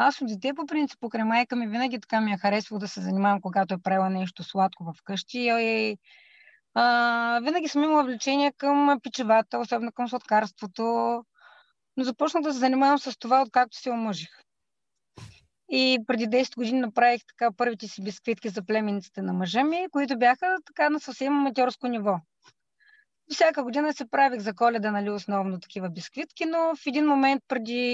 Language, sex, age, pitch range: Bulgarian, female, 20-39, 220-290 Hz